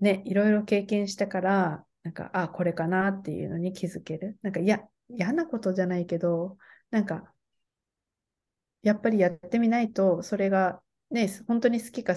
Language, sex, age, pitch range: Japanese, female, 20-39, 175-220 Hz